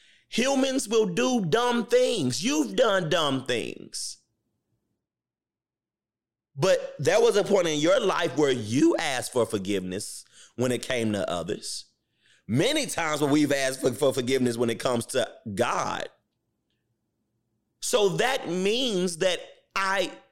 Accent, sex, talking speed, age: American, male, 135 wpm, 30-49